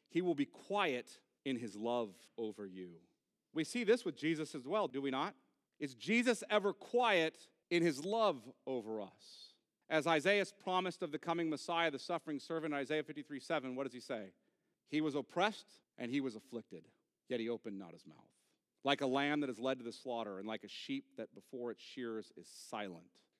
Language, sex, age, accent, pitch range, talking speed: English, male, 40-59, American, 110-145 Hz, 195 wpm